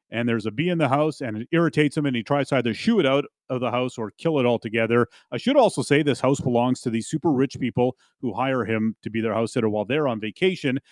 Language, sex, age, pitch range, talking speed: English, male, 30-49, 120-160 Hz, 275 wpm